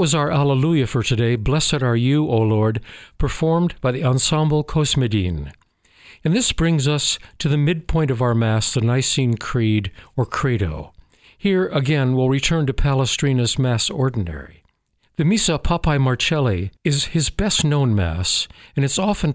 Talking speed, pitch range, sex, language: 155 wpm, 115-155 Hz, male, English